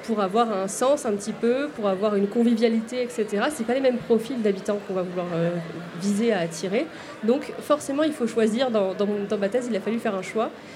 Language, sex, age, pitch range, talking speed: French, female, 30-49, 220-275 Hz, 240 wpm